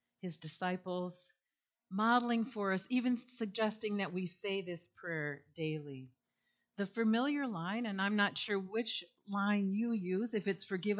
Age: 50-69